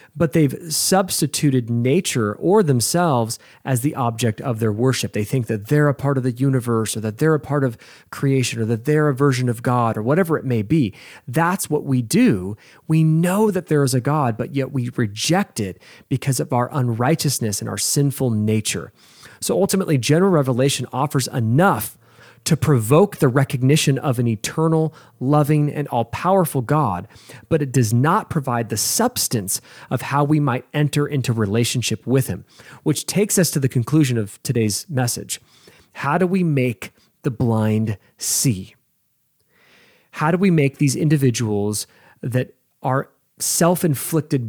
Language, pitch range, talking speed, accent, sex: English, 120-155 Hz, 165 wpm, American, male